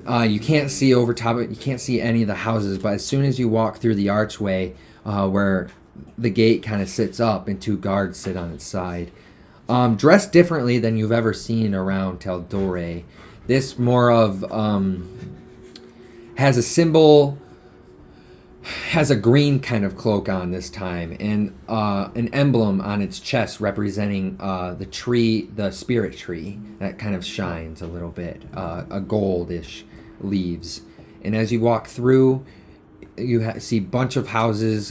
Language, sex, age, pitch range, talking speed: English, male, 30-49, 95-125 Hz, 170 wpm